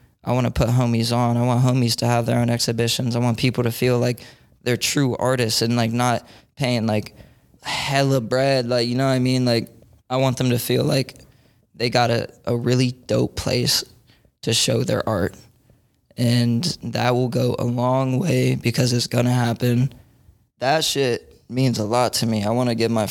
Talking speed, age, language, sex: 205 wpm, 20-39, English, male